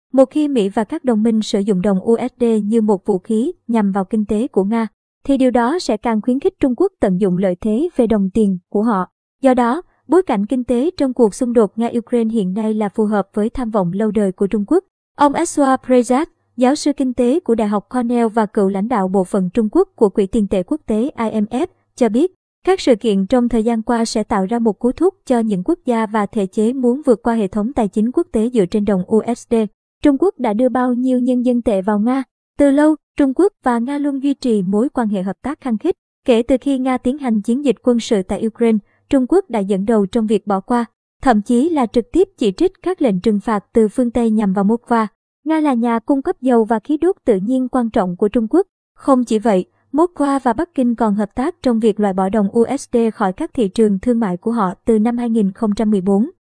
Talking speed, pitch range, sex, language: 245 wpm, 215-260 Hz, male, Vietnamese